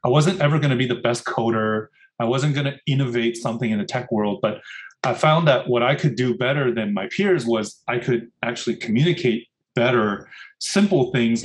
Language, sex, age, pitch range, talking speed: English, male, 30-49, 115-145 Hz, 205 wpm